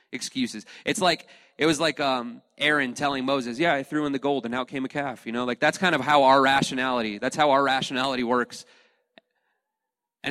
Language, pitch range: English, 135-185 Hz